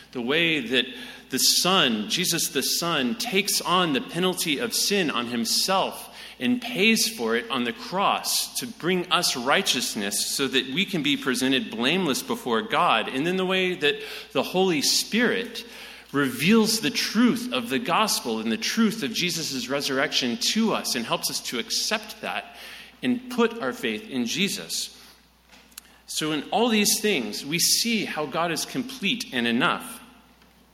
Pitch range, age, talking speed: 140-225 Hz, 40-59, 160 wpm